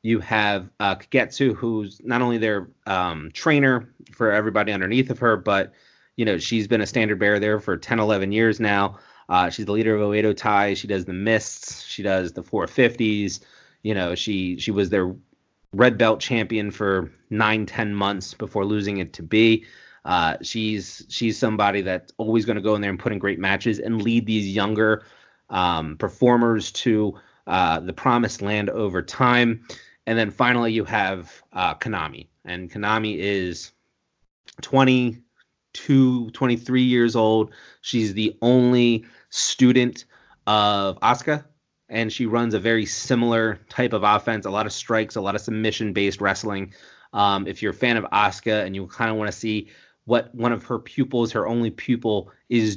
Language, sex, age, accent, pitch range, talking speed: English, male, 30-49, American, 100-115 Hz, 175 wpm